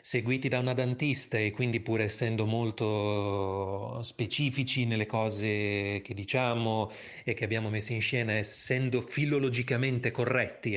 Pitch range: 110-145 Hz